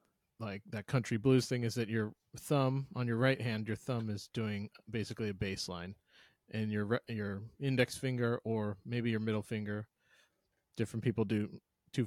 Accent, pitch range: American, 100-120 Hz